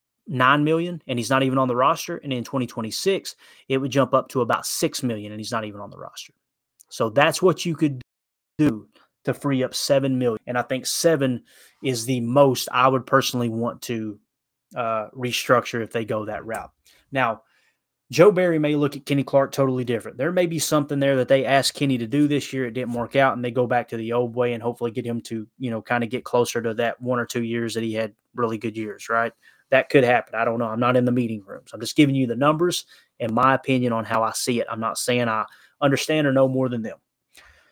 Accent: American